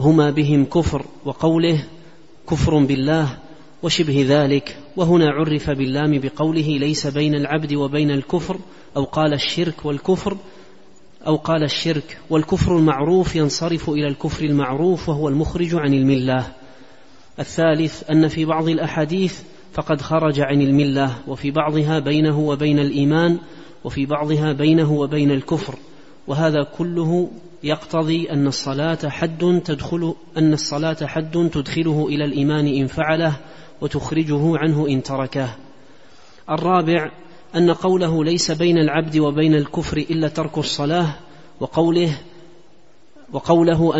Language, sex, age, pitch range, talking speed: Arabic, male, 30-49, 145-165 Hz, 115 wpm